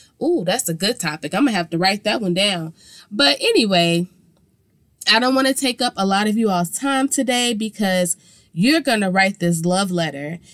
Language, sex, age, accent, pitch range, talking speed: English, female, 20-39, American, 180-260 Hz, 210 wpm